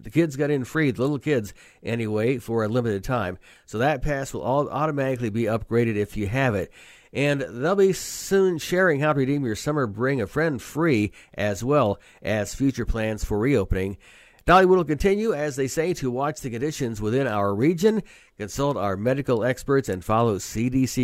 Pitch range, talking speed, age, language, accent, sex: 105-140 Hz, 190 wpm, 50-69, English, American, male